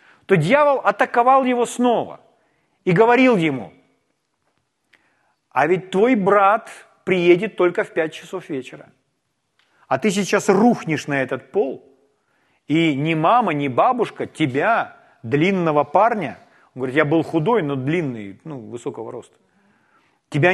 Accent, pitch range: native, 155-205 Hz